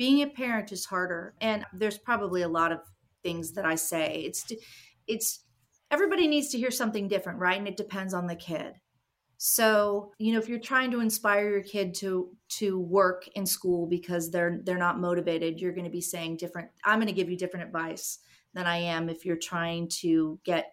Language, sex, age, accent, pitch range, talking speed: English, female, 30-49, American, 175-225 Hz, 205 wpm